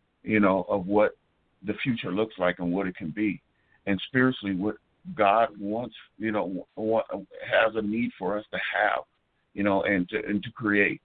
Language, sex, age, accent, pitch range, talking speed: English, male, 50-69, American, 100-120 Hz, 185 wpm